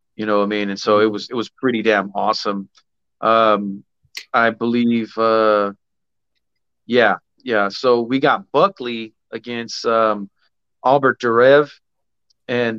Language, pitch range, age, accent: English, 105-120 Hz, 30-49, American